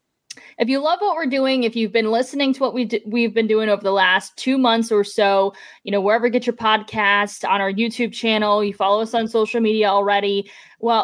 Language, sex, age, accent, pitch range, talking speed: English, female, 20-39, American, 205-245 Hz, 235 wpm